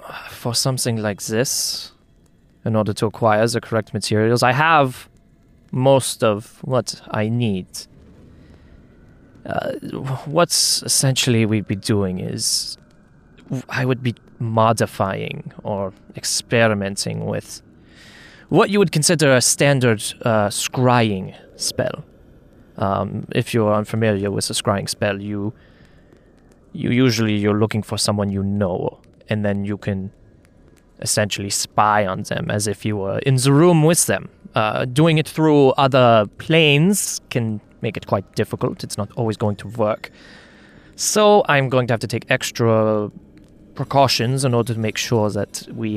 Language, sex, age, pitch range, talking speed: English, male, 20-39, 105-130 Hz, 140 wpm